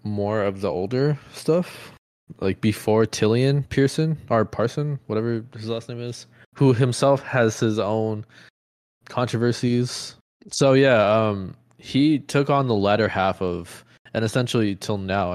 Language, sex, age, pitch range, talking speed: English, male, 20-39, 100-125 Hz, 140 wpm